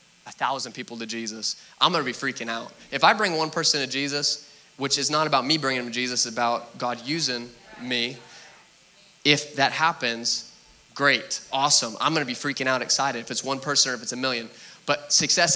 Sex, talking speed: male, 210 wpm